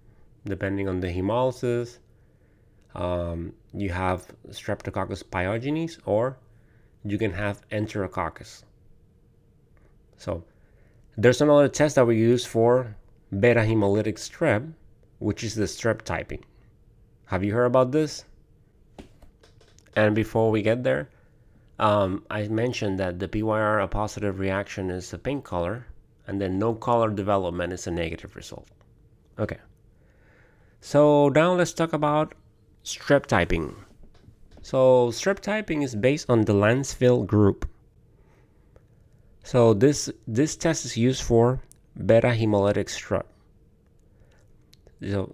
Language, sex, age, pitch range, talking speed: English, male, 30-49, 100-120 Hz, 120 wpm